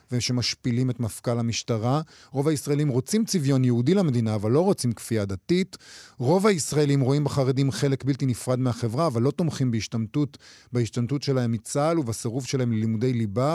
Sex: male